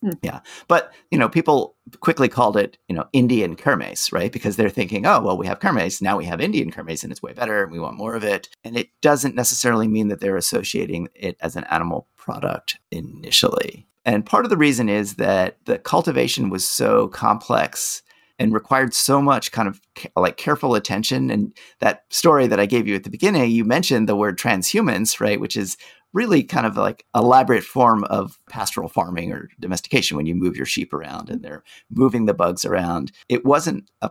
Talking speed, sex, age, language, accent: 200 wpm, male, 30-49, English, American